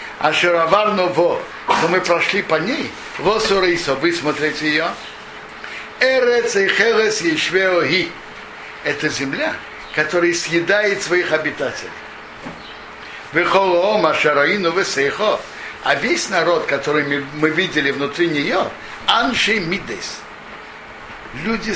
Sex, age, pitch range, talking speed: male, 60-79, 150-195 Hz, 90 wpm